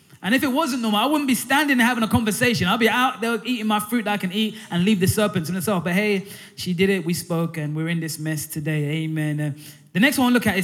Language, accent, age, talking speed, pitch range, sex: English, British, 20-39, 290 wpm, 170-235 Hz, male